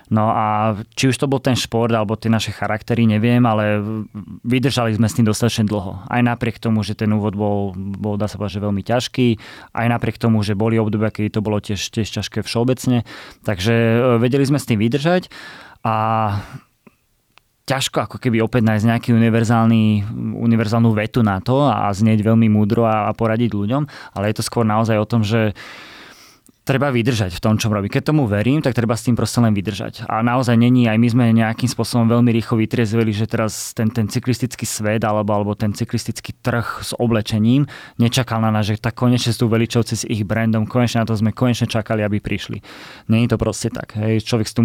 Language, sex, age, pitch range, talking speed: Slovak, male, 20-39, 105-120 Hz, 200 wpm